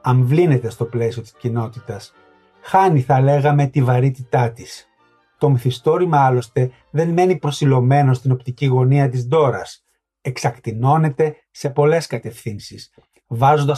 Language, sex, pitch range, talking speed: Greek, male, 125-150 Hz, 120 wpm